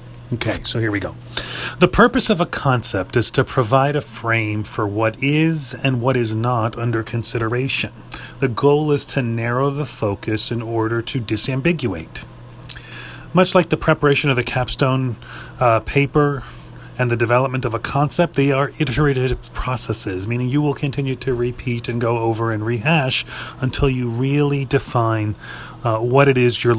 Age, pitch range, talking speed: 30-49, 110-135 Hz, 165 wpm